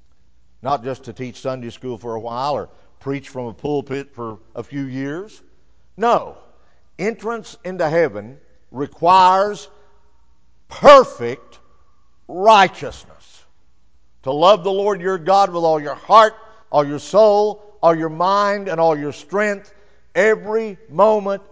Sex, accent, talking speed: male, American, 130 wpm